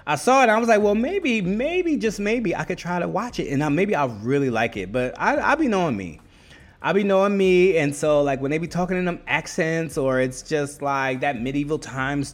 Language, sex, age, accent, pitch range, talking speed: English, male, 20-39, American, 115-165 Hz, 255 wpm